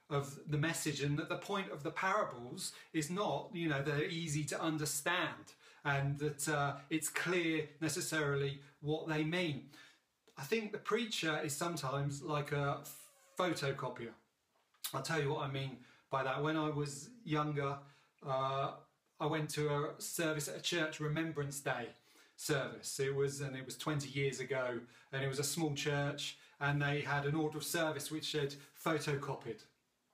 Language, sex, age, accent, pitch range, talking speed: English, male, 40-59, British, 140-160 Hz, 165 wpm